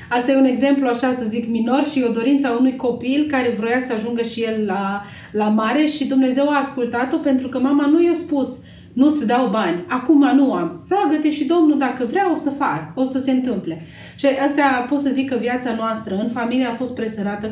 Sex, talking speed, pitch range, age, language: female, 220 wpm, 205-255 Hz, 30-49, Romanian